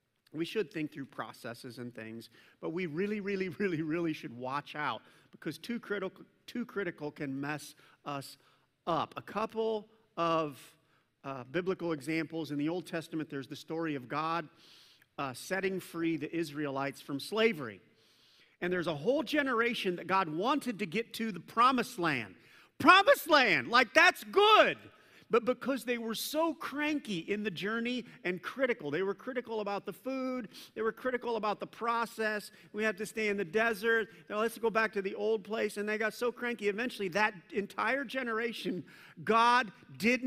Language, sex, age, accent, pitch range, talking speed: English, male, 50-69, American, 160-225 Hz, 170 wpm